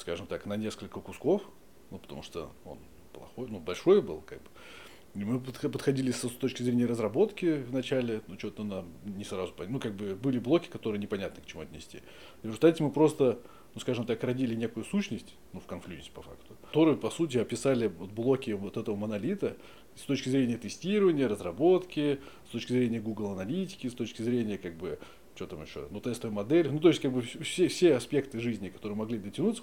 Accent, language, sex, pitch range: native, Russian, male, 110-135 Hz